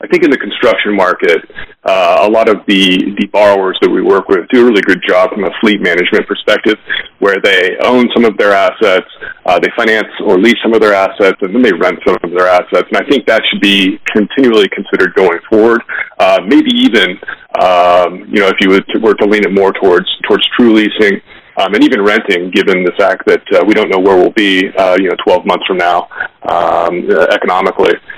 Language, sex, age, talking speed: English, male, 30-49, 225 wpm